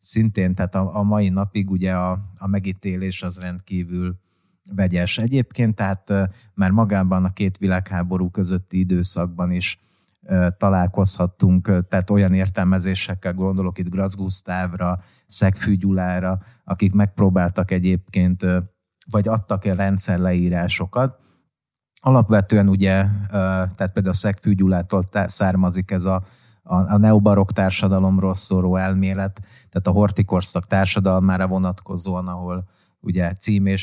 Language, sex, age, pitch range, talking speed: Hungarian, male, 30-49, 90-100 Hz, 105 wpm